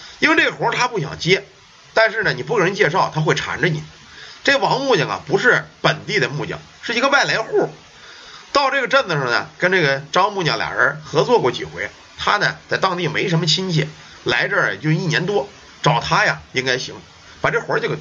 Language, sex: Chinese, male